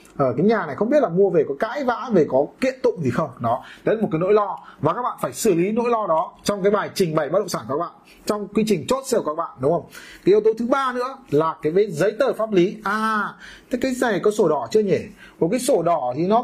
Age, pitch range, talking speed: 30-49, 180-235 Hz, 300 wpm